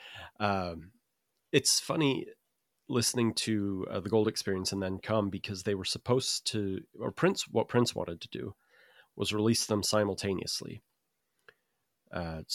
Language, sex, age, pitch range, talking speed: English, male, 30-49, 90-110 Hz, 145 wpm